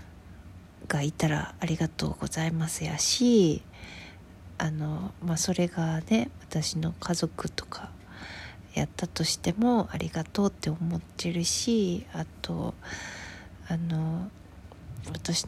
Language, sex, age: Japanese, female, 40-59